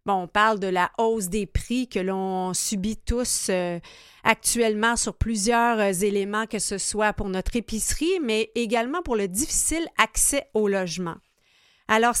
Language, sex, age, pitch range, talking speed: French, female, 30-49, 200-240 Hz, 150 wpm